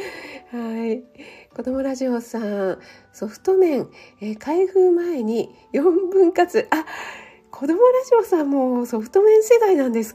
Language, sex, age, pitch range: Japanese, female, 40-59, 225-360 Hz